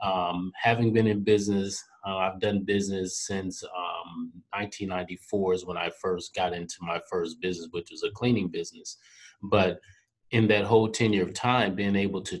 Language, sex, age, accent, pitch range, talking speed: English, male, 30-49, American, 90-105 Hz, 175 wpm